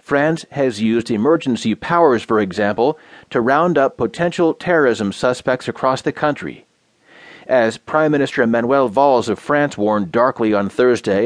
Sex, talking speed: male, 145 wpm